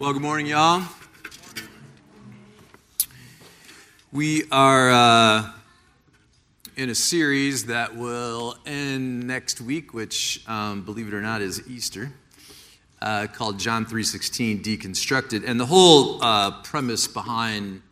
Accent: American